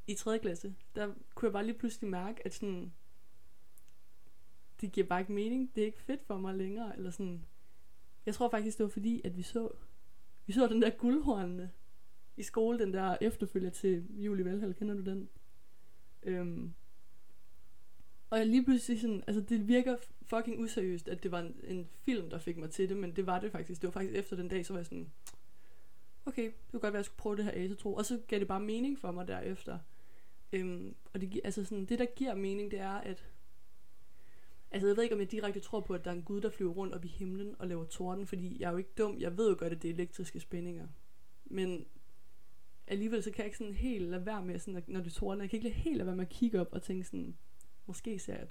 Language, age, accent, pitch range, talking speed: Danish, 20-39, native, 175-215 Hz, 240 wpm